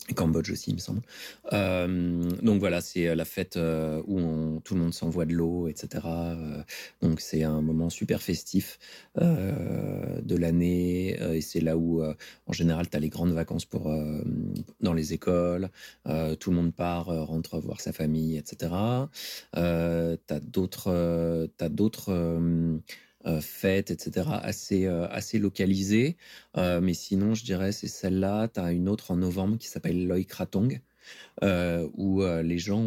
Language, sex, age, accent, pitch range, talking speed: French, male, 30-49, French, 80-95 Hz, 175 wpm